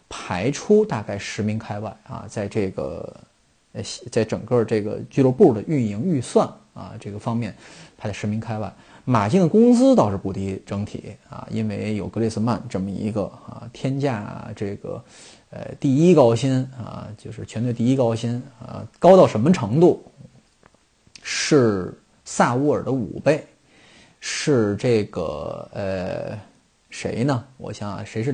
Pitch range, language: 105-135 Hz, Chinese